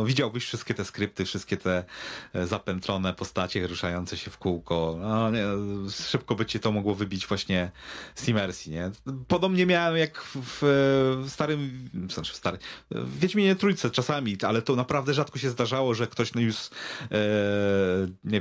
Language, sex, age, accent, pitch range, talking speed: Polish, male, 30-49, native, 95-120 Hz, 170 wpm